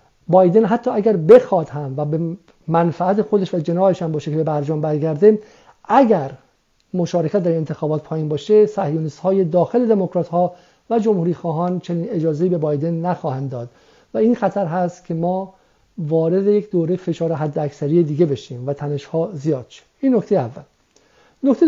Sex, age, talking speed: male, 50-69, 170 wpm